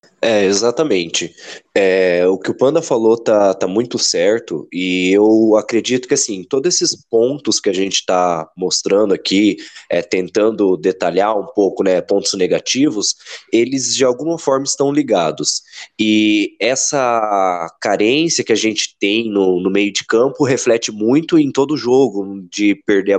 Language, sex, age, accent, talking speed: Portuguese, male, 20-39, Brazilian, 155 wpm